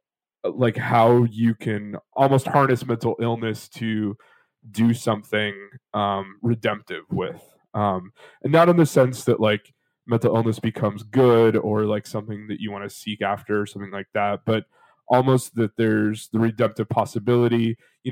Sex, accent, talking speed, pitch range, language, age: male, American, 155 wpm, 105-120 Hz, English, 20-39